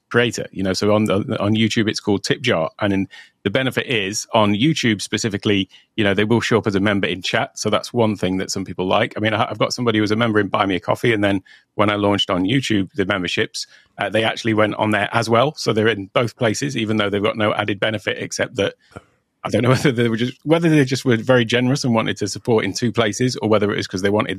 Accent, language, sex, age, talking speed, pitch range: British, English, male, 30-49, 275 wpm, 100-120 Hz